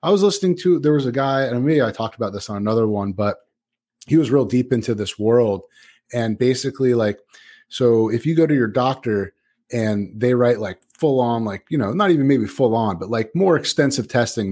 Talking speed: 215 wpm